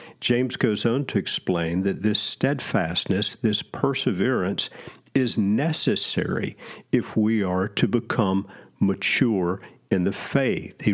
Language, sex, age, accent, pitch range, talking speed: English, male, 50-69, American, 100-130 Hz, 120 wpm